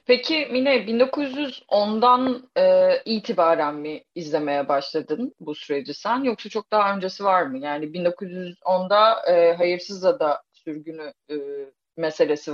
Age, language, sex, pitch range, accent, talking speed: 30-49, Turkish, female, 165-235 Hz, native, 120 wpm